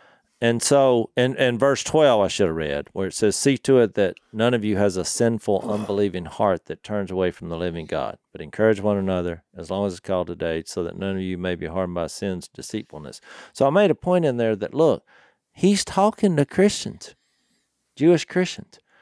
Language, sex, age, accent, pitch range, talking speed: English, male, 50-69, American, 105-170 Hz, 220 wpm